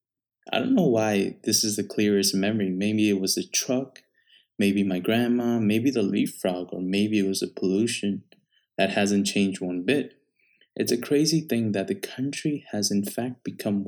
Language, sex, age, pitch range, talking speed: English, male, 20-39, 100-120 Hz, 185 wpm